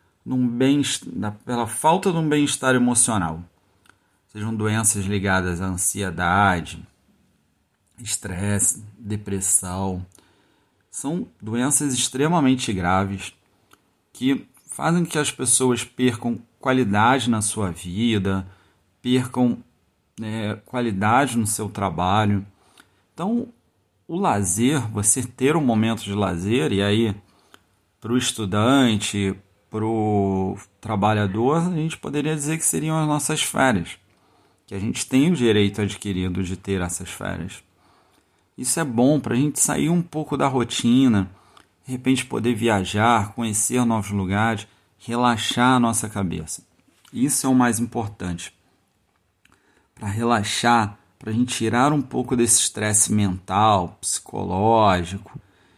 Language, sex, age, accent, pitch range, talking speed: Portuguese, male, 40-59, Brazilian, 100-130 Hz, 120 wpm